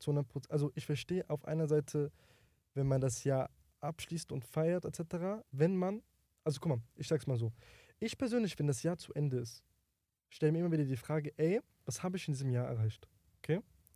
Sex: male